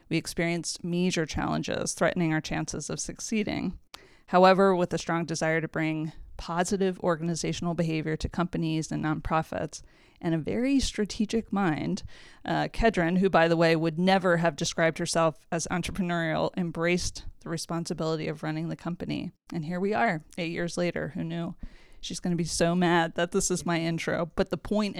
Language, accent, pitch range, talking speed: English, American, 165-190 Hz, 170 wpm